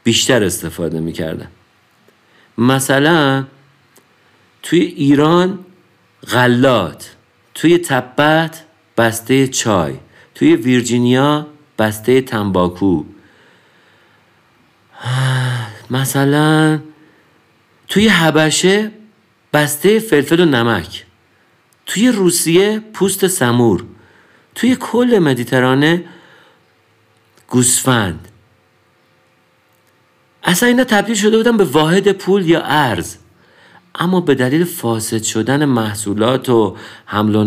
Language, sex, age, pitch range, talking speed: Persian, male, 50-69, 115-165 Hz, 80 wpm